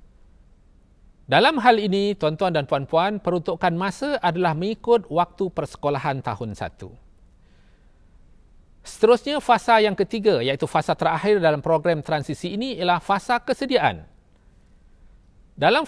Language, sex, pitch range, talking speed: Malay, male, 125-205 Hz, 110 wpm